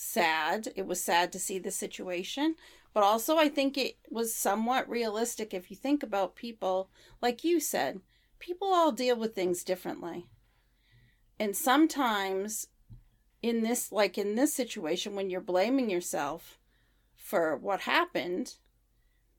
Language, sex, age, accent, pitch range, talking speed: English, female, 40-59, American, 190-255 Hz, 140 wpm